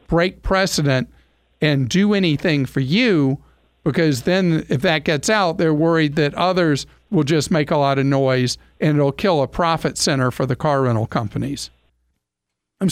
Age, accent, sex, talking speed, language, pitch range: 50-69, American, male, 165 wpm, English, 135-170 Hz